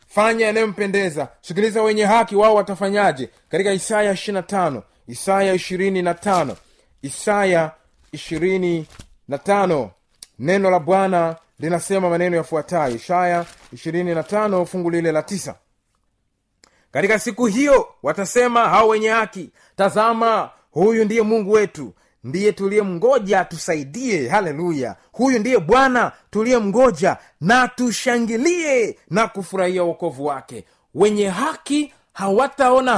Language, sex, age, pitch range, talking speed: Swahili, male, 30-49, 165-215 Hz, 105 wpm